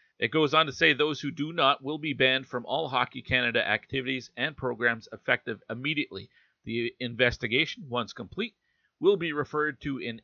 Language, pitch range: English, 110-140 Hz